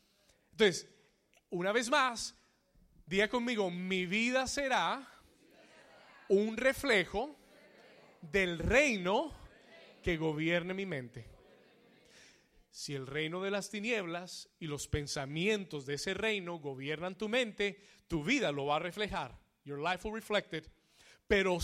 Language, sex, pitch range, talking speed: Spanish, male, 175-230 Hz, 120 wpm